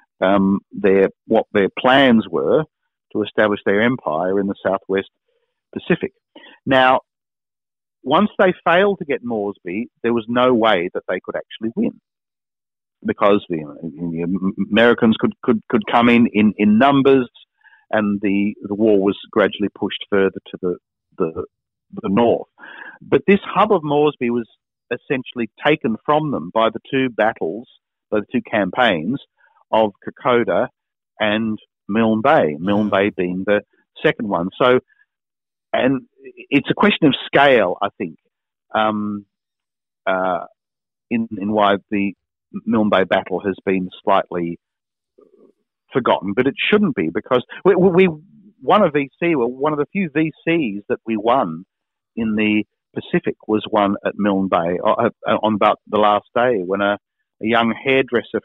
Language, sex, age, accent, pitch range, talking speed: English, male, 50-69, Australian, 100-140 Hz, 145 wpm